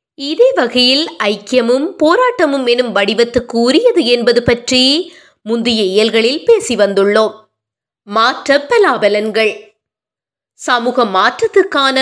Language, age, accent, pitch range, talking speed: Tamil, 20-39, native, 220-310 Hz, 70 wpm